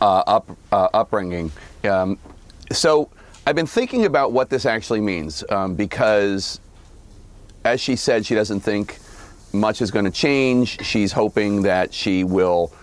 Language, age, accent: English, 40-59, American